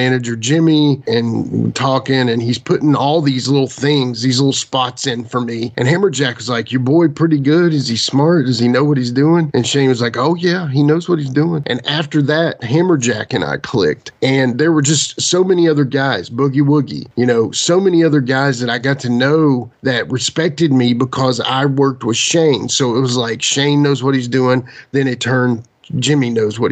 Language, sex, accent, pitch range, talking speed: English, male, American, 120-145 Hz, 215 wpm